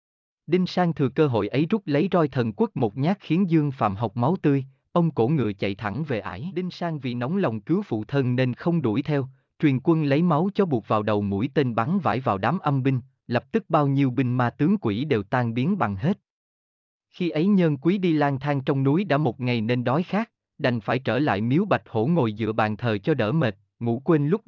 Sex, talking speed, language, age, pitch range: male, 245 wpm, Vietnamese, 20-39, 115-165 Hz